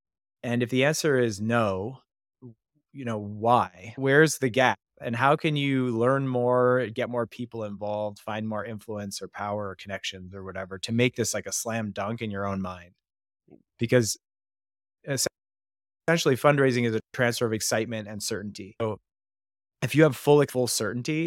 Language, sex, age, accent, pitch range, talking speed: English, male, 30-49, American, 100-125 Hz, 165 wpm